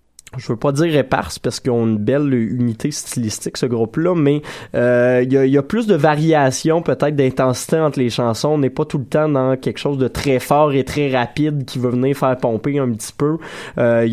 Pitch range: 115-140 Hz